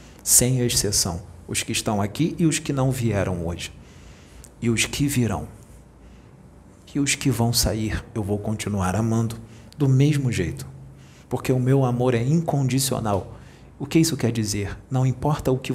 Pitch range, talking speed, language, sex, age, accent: 110-140 Hz, 165 wpm, Portuguese, male, 40-59, Brazilian